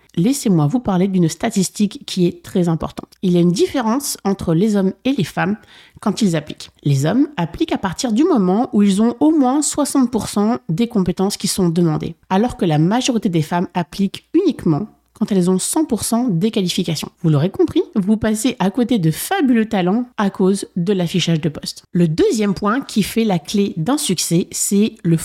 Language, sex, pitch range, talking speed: French, female, 175-235 Hz, 195 wpm